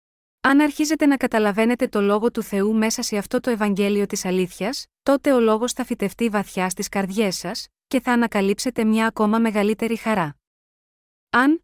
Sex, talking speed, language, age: female, 165 wpm, Greek, 20-39